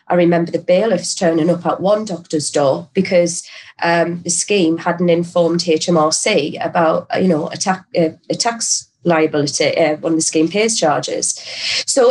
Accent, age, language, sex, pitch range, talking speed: British, 30-49, English, female, 160-190 Hz, 155 wpm